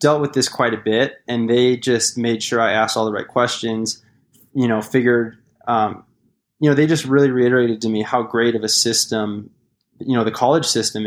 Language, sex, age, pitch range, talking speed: English, male, 20-39, 110-130 Hz, 210 wpm